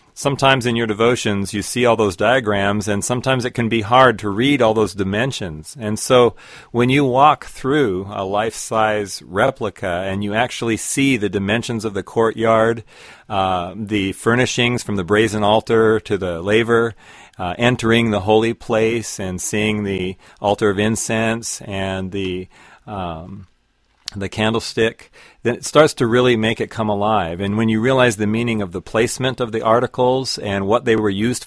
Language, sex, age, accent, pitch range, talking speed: English, male, 40-59, American, 100-120 Hz, 170 wpm